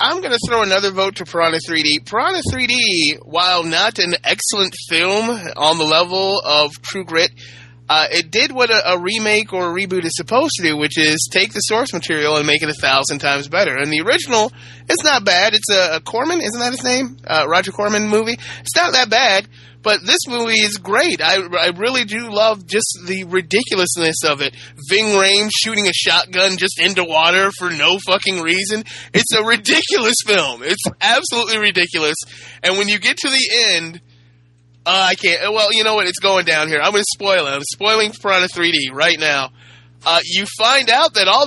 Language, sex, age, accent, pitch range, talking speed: English, male, 20-39, American, 155-215 Hz, 200 wpm